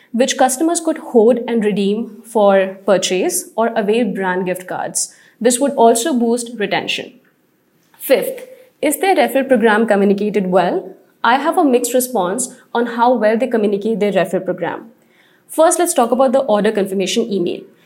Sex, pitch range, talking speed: female, 210-270 Hz, 155 wpm